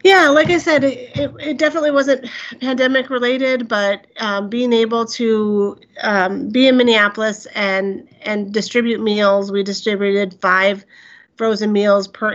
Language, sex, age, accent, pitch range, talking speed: English, female, 40-59, American, 195-225 Hz, 140 wpm